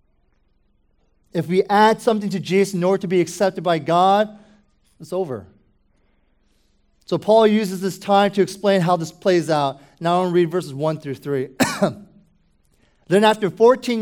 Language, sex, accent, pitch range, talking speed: English, male, American, 175-215 Hz, 165 wpm